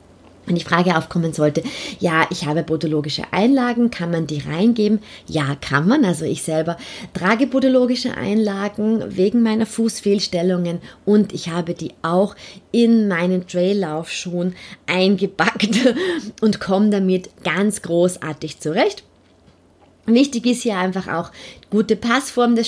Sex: female